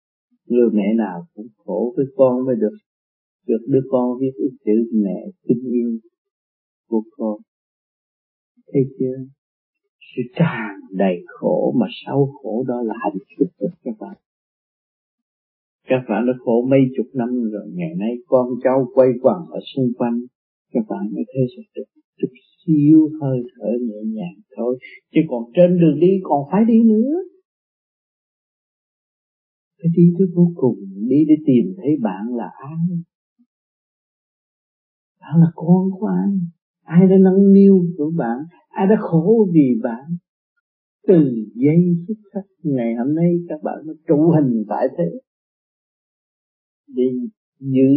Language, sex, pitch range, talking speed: Vietnamese, male, 120-190 Hz, 145 wpm